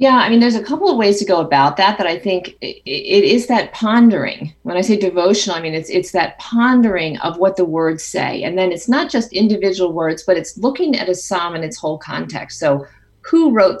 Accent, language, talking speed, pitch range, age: American, English, 235 wpm, 170-225 Hz, 40-59